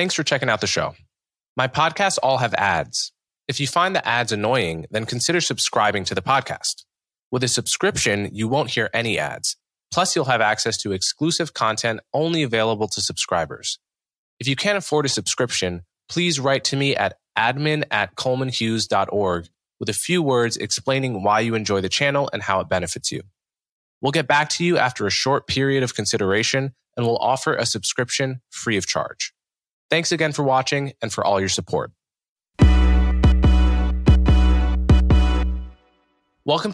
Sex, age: male, 20-39